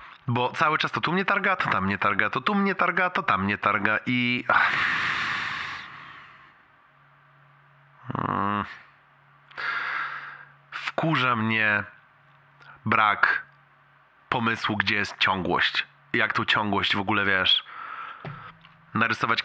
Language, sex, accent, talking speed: Polish, male, native, 110 wpm